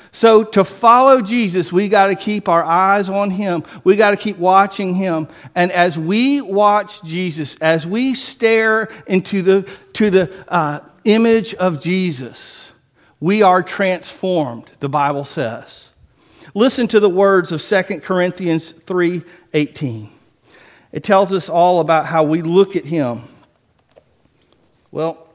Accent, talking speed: American, 140 wpm